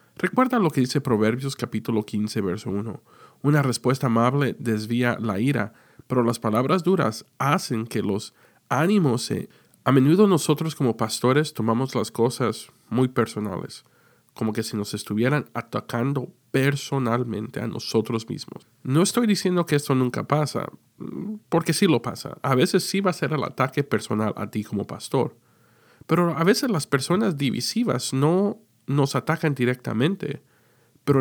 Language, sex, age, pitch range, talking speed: Spanish, male, 40-59, 115-155 Hz, 150 wpm